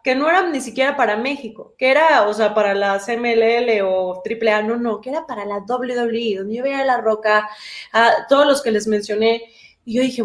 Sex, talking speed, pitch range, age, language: female, 215 wpm, 225-290 Hz, 20-39, Spanish